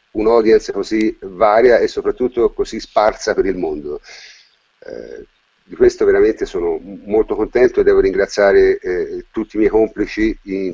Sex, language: male, Italian